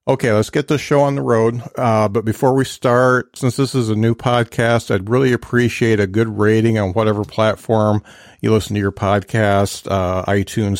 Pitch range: 105-125 Hz